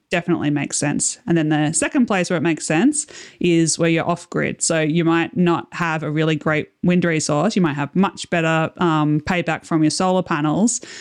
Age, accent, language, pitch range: 20-39, Australian, English, 155-180 Hz